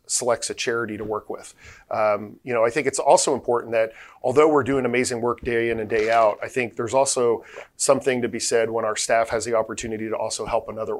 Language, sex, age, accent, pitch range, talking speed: English, male, 40-59, American, 110-135 Hz, 235 wpm